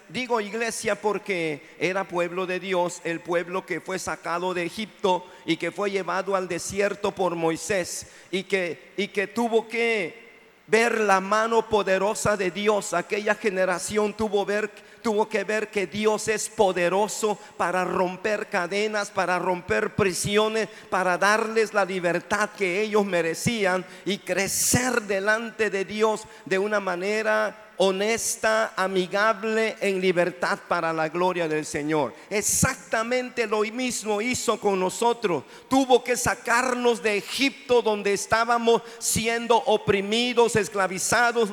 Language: Spanish